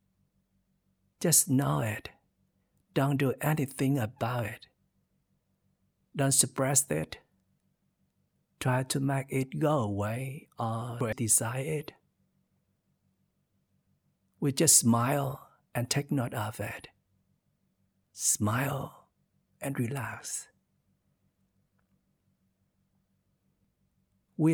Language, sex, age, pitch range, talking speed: Vietnamese, male, 50-69, 110-135 Hz, 80 wpm